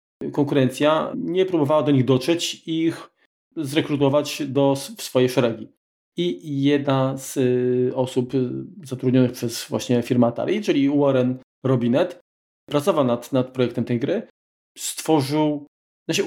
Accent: native